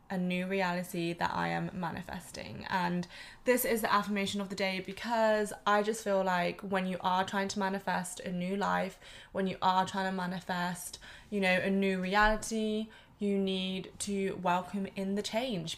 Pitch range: 180-205 Hz